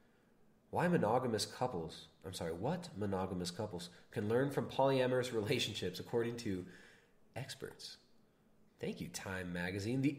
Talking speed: 125 wpm